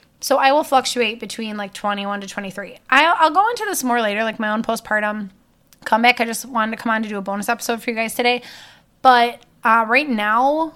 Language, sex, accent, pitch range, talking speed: English, female, American, 200-250 Hz, 225 wpm